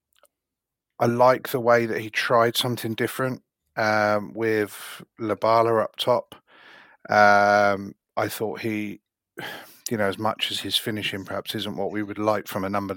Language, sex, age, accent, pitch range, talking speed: English, male, 30-49, British, 100-110 Hz, 155 wpm